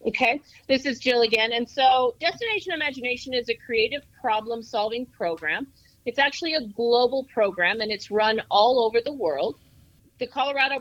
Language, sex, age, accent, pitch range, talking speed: English, female, 40-59, American, 190-235 Hz, 155 wpm